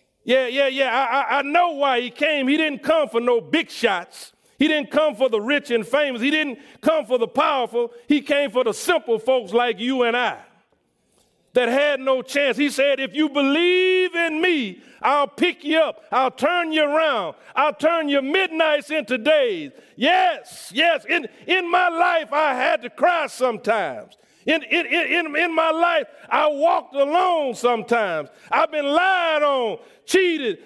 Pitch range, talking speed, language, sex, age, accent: 275-345 Hz, 180 wpm, English, male, 40-59, American